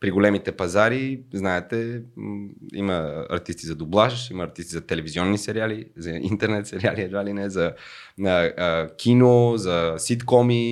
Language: Bulgarian